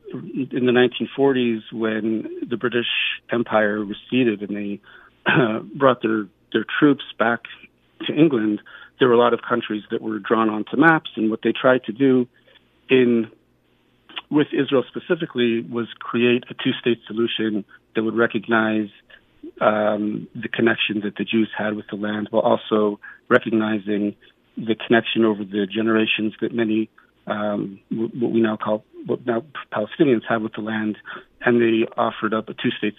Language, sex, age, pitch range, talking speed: English, male, 40-59, 105-120 Hz, 155 wpm